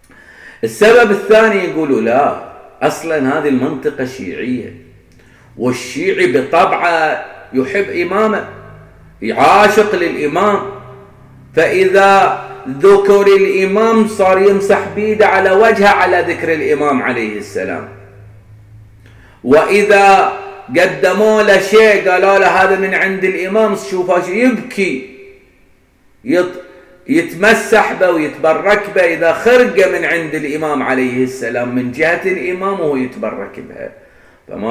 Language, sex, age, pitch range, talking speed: Arabic, male, 40-59, 145-200 Hz, 100 wpm